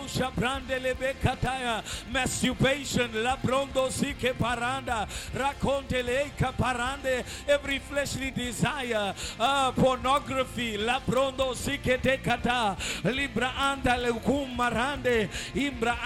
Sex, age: male, 50-69